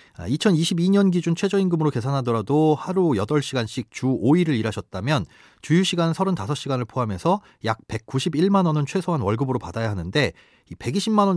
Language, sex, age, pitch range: Korean, male, 30-49, 115-170 Hz